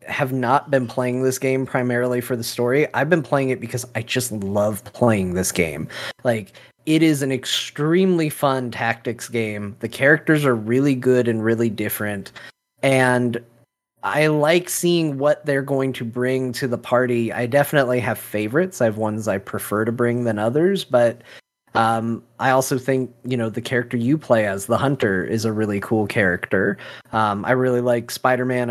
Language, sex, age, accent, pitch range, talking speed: English, male, 20-39, American, 110-130 Hz, 180 wpm